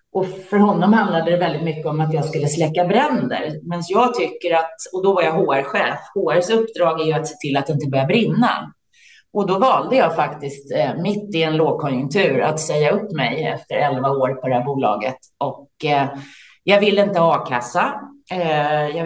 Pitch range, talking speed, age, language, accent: 155-235 Hz, 190 wpm, 30-49, Swedish, native